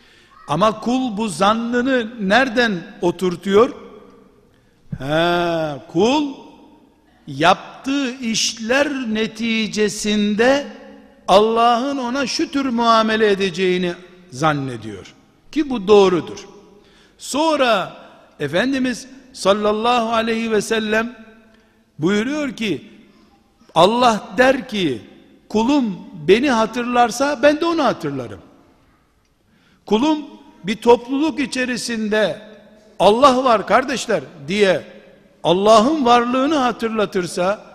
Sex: male